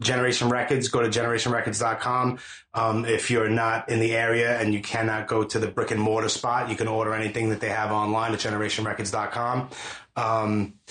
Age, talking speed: 30-49, 180 wpm